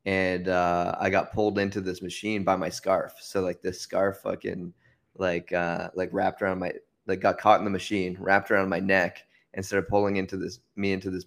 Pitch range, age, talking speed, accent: 90-100 Hz, 20-39, 215 wpm, American